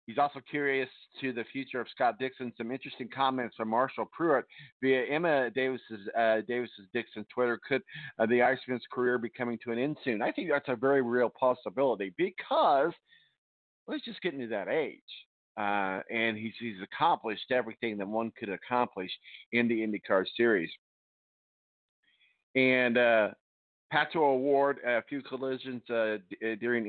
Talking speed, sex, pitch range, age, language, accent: 160 wpm, male, 110-130 Hz, 50-69, English, American